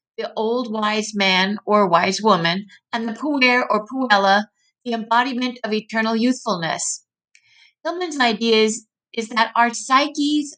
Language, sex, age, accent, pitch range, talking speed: English, female, 50-69, American, 210-260 Hz, 130 wpm